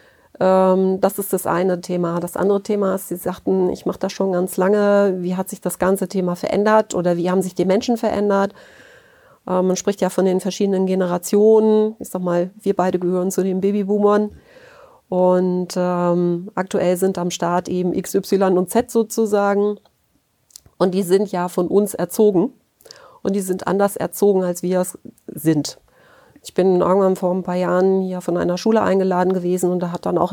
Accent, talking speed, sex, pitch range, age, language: German, 180 wpm, female, 180-205 Hz, 40-59, German